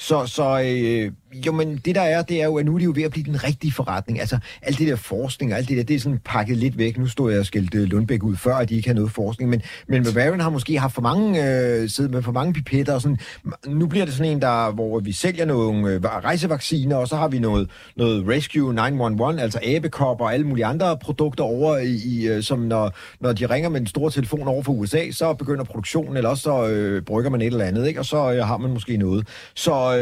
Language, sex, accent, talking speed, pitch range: Danish, male, native, 255 wpm, 115-150 Hz